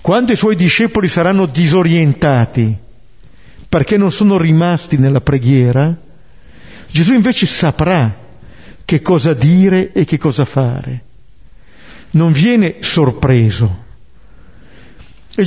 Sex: male